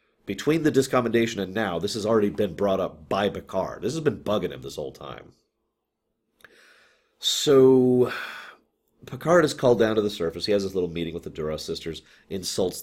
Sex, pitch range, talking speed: male, 90-125 Hz, 185 wpm